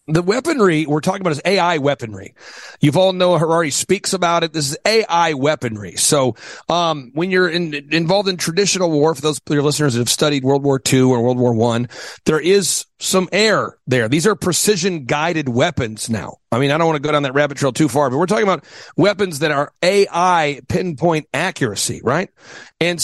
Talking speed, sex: 205 wpm, male